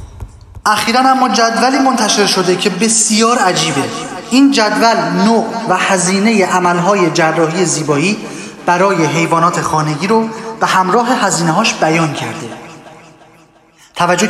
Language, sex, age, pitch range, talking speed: Persian, male, 30-49, 160-215 Hz, 115 wpm